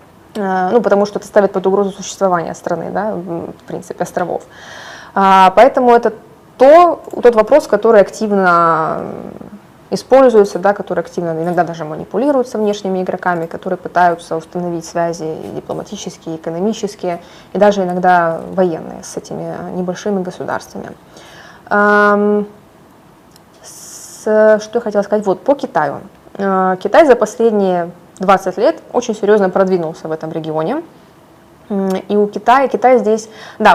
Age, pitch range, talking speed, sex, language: 20-39, 175-215 Hz, 125 wpm, female, Russian